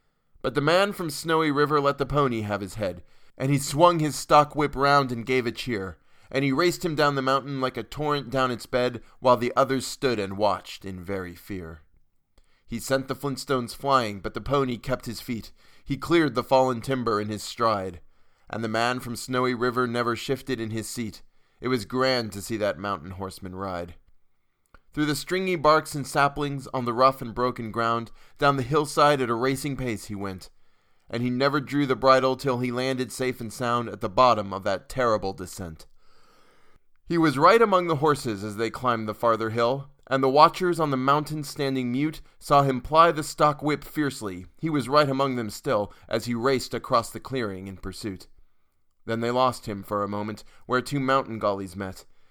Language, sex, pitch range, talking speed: English, male, 105-140 Hz, 205 wpm